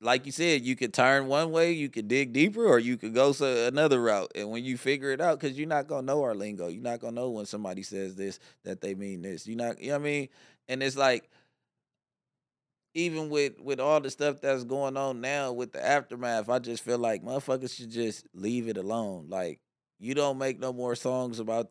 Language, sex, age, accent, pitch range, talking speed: English, male, 20-39, American, 115-140 Hz, 235 wpm